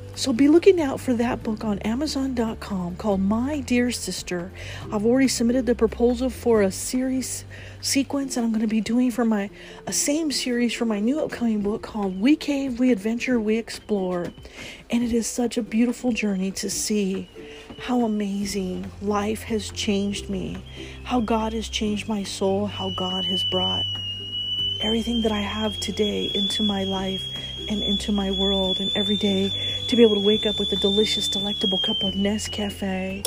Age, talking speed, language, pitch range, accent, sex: 40-59, 175 wpm, English, 195-255 Hz, American, female